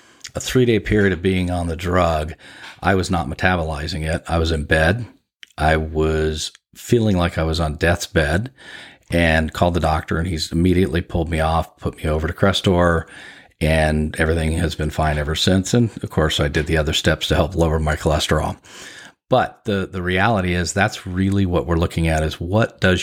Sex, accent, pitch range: male, American, 80-90 Hz